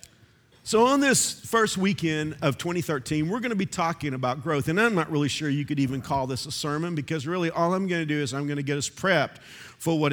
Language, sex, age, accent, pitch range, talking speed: English, male, 50-69, American, 125-155 Hz, 250 wpm